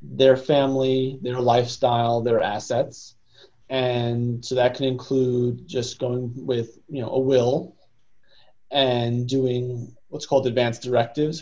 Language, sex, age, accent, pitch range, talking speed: English, male, 30-49, American, 120-135 Hz, 125 wpm